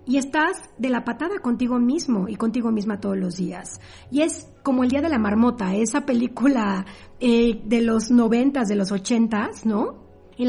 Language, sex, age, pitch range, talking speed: Spanish, female, 40-59, 220-275 Hz, 185 wpm